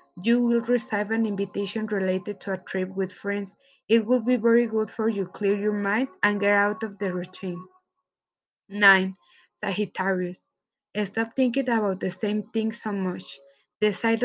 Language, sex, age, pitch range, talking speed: Spanish, female, 20-39, 200-240 Hz, 160 wpm